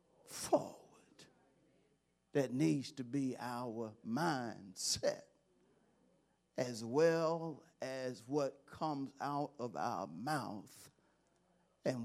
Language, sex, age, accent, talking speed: English, male, 50-69, American, 85 wpm